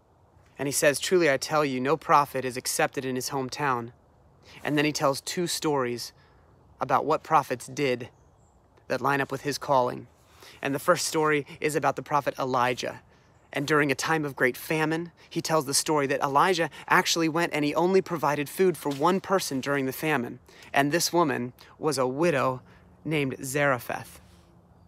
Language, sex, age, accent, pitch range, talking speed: English, male, 30-49, American, 120-155 Hz, 175 wpm